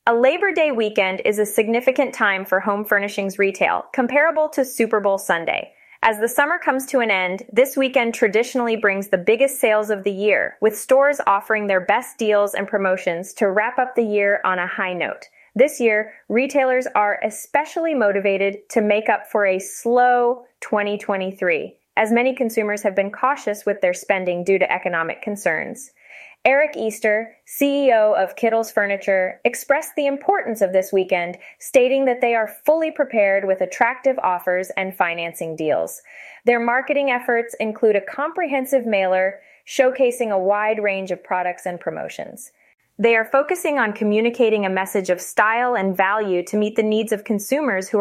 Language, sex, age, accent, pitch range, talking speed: English, female, 20-39, American, 195-260 Hz, 165 wpm